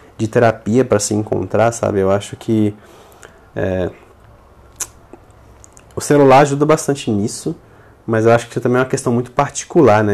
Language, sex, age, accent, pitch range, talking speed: Portuguese, male, 20-39, Brazilian, 105-130 Hz, 160 wpm